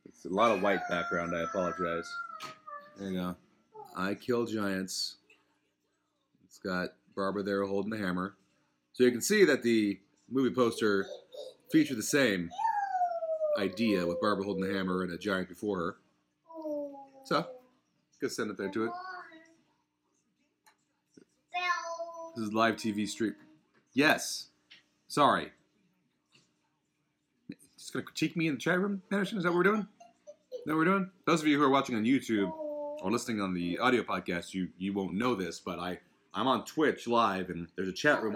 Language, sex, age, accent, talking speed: English, male, 30-49, American, 165 wpm